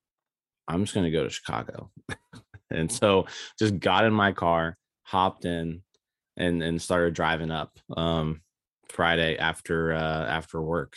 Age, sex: 20-39, male